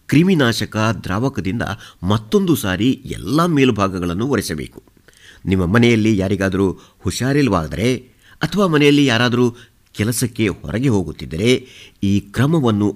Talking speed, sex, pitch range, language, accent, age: 90 wpm, male, 100-130 Hz, Kannada, native, 50-69